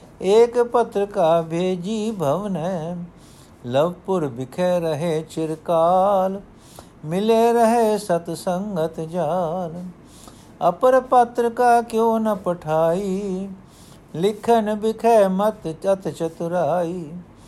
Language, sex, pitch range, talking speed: Punjabi, male, 165-200 Hz, 85 wpm